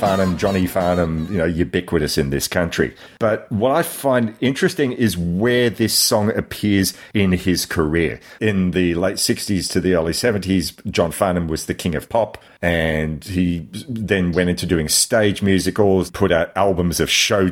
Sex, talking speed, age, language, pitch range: male, 170 wpm, 40-59, English, 80-95 Hz